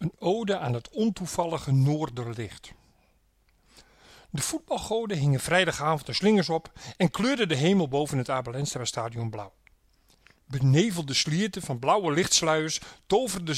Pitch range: 140-200 Hz